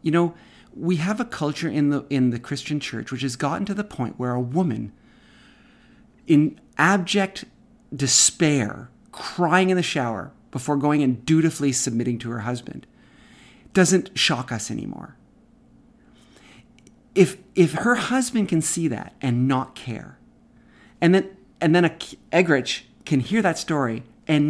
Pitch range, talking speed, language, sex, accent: 125-185 Hz, 145 wpm, English, male, American